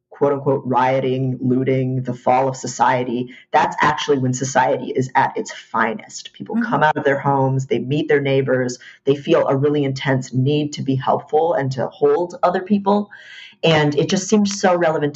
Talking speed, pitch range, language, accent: 180 wpm, 130-155 Hz, English, American